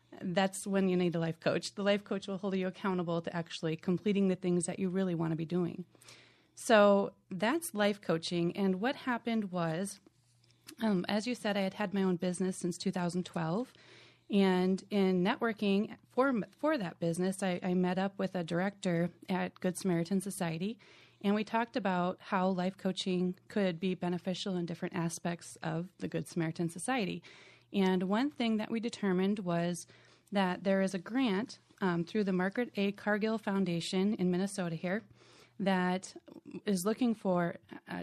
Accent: American